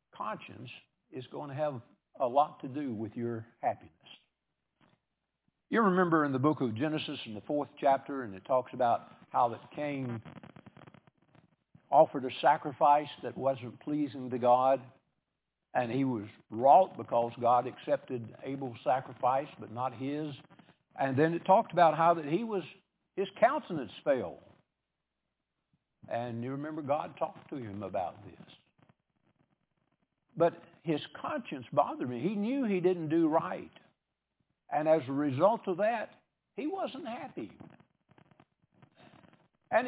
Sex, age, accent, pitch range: male, 60-79, American, 125-165 Hz